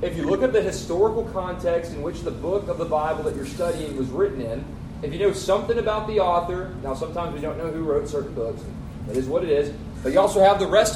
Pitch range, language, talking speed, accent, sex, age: 180-235 Hz, English, 255 wpm, American, male, 30-49